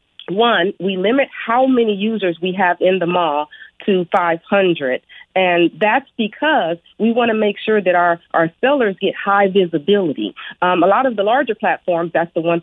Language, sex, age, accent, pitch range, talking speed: English, female, 40-59, American, 170-220 Hz, 180 wpm